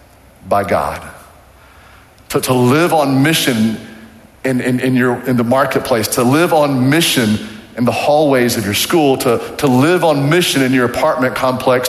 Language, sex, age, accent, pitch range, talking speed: English, male, 40-59, American, 115-145 Hz, 165 wpm